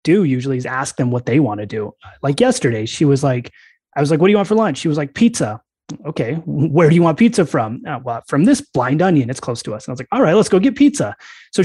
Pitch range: 135-165 Hz